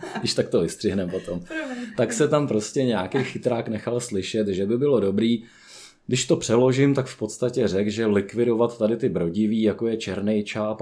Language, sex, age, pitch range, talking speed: Czech, male, 20-39, 100-120 Hz, 185 wpm